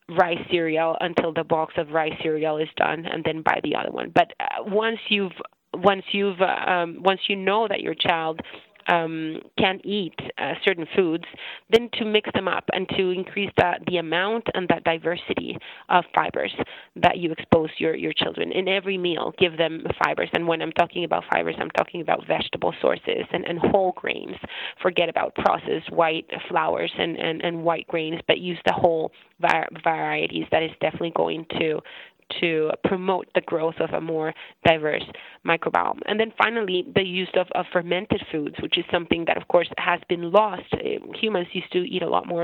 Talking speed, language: 185 wpm, English